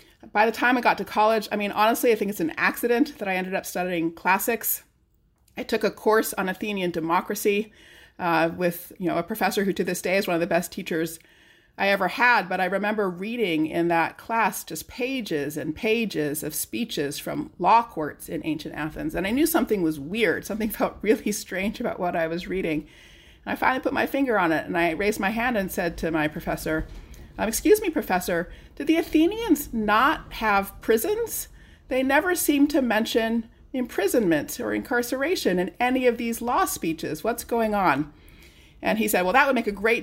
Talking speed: 200 wpm